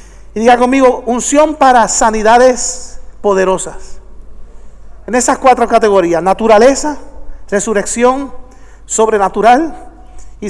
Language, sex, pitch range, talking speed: English, male, 230-280 Hz, 85 wpm